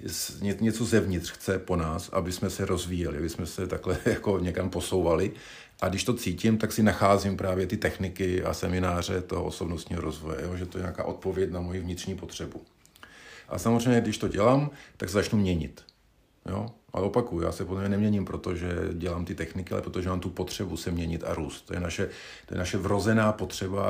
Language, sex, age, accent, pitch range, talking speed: Czech, male, 50-69, native, 90-100 Hz, 195 wpm